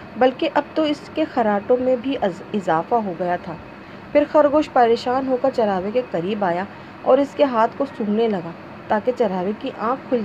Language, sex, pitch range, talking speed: Urdu, female, 210-275 Hz, 195 wpm